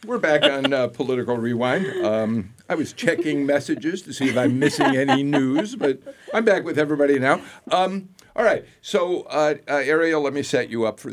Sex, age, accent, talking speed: male, 50-69, American, 200 wpm